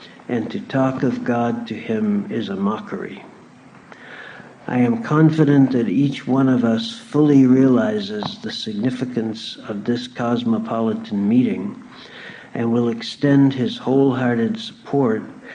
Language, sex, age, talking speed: English, male, 60-79, 125 wpm